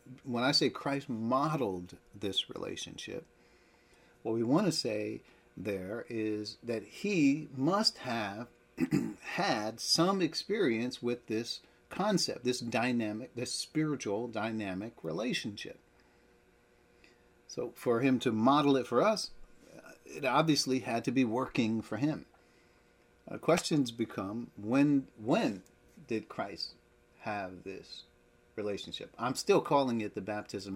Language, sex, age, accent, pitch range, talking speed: English, male, 50-69, American, 100-130 Hz, 120 wpm